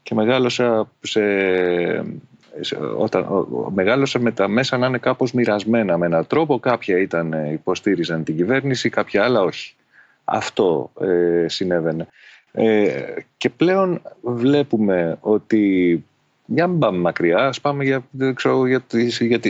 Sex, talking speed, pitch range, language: male, 120 wpm, 95-135 Hz, Greek